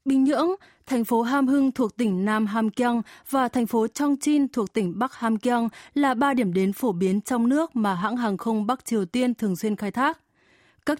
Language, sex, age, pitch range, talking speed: Vietnamese, female, 20-39, 205-260 Hz, 220 wpm